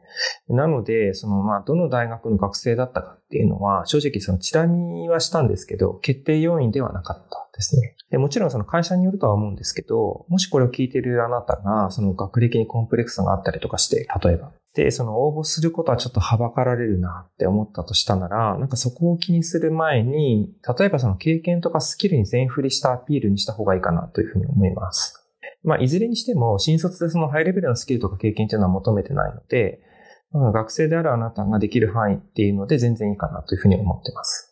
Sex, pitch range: male, 105-140 Hz